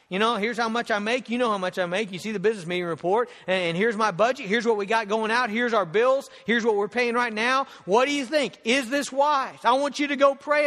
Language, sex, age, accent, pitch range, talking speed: English, male, 40-59, American, 205-275 Hz, 285 wpm